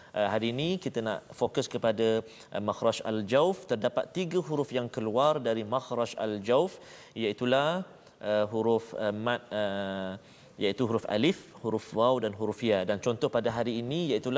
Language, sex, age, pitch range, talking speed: Malayalam, male, 30-49, 110-155 Hz, 155 wpm